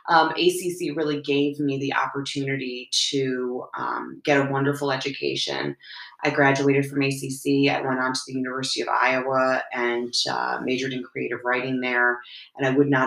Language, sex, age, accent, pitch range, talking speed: English, female, 30-49, American, 130-155 Hz, 165 wpm